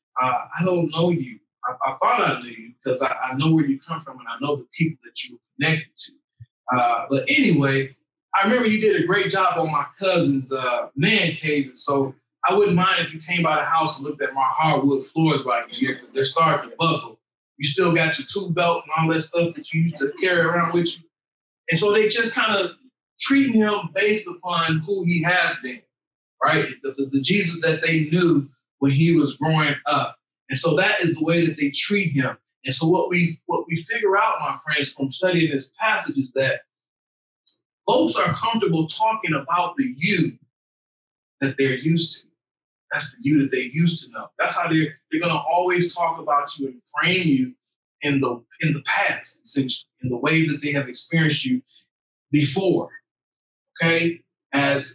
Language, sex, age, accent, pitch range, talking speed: English, male, 20-39, American, 140-175 Hz, 205 wpm